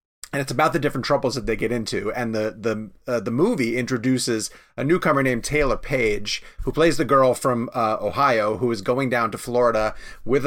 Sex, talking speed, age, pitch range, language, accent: male, 205 wpm, 30-49, 115-150 Hz, English, American